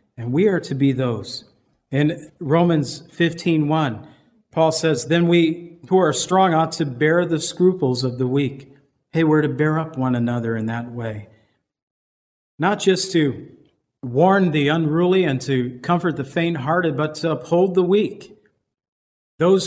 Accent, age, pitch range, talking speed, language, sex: American, 50-69, 140-175 Hz, 160 wpm, English, male